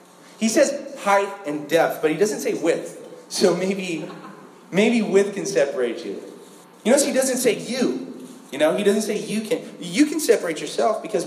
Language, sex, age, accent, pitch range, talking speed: English, male, 30-49, American, 135-200 Hz, 185 wpm